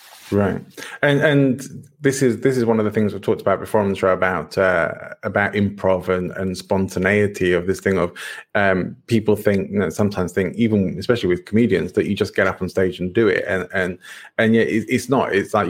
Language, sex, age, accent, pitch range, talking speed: English, male, 30-49, British, 95-110 Hz, 225 wpm